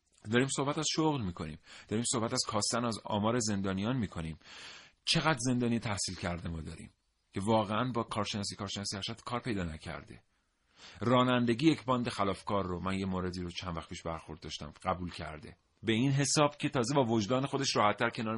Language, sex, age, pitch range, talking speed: Persian, male, 40-59, 90-115 Hz, 175 wpm